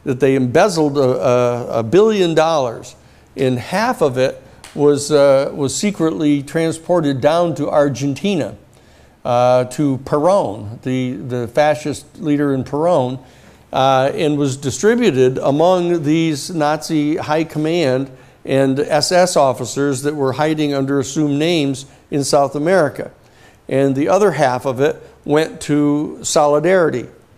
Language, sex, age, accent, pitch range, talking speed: English, male, 60-79, American, 130-150 Hz, 130 wpm